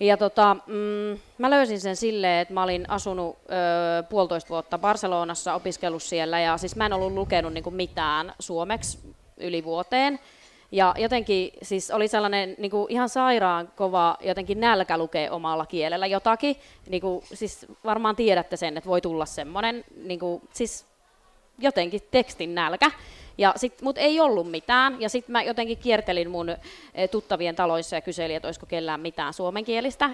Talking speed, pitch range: 160 wpm, 175-225 Hz